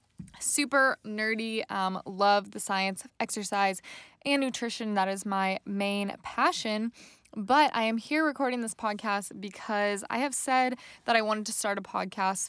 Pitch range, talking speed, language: 200-245 Hz, 160 wpm, English